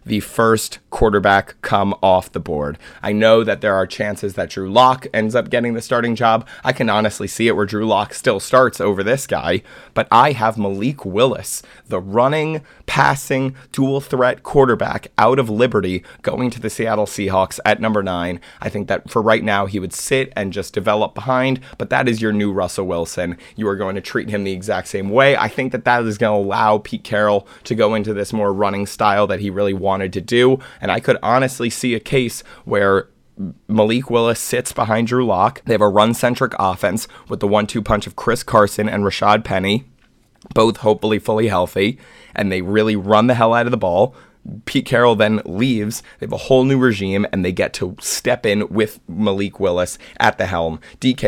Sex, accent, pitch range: male, American, 100-120 Hz